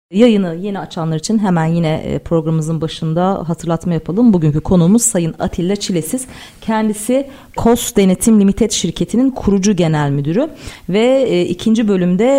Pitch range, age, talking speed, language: 170-235 Hz, 40-59, 125 wpm, Turkish